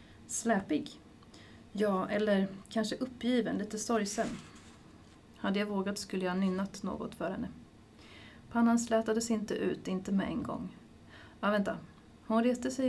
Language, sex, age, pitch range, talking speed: Swedish, female, 30-49, 185-225 Hz, 135 wpm